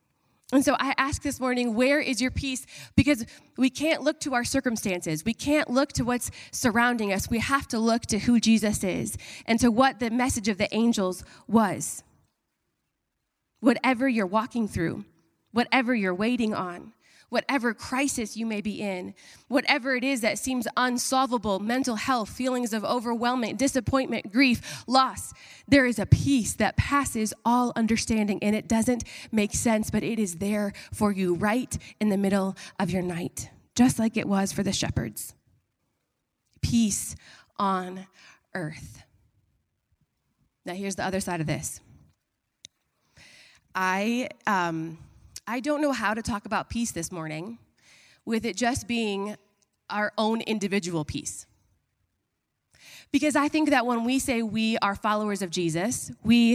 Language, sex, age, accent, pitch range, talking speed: English, female, 20-39, American, 195-250 Hz, 155 wpm